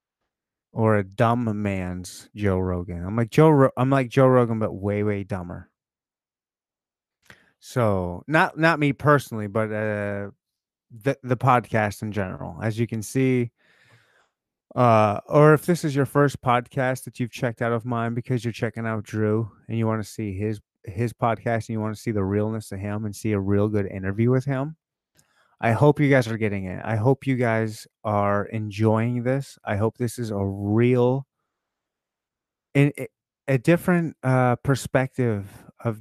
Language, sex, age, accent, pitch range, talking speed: English, male, 30-49, American, 100-125 Hz, 170 wpm